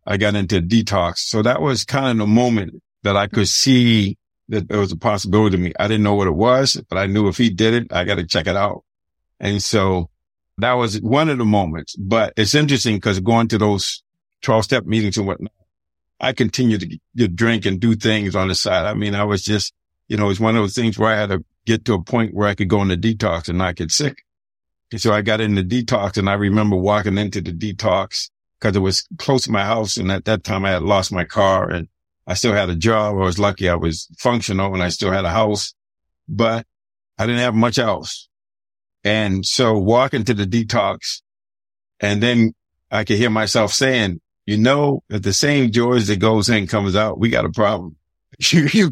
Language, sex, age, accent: English, male, 50-69, American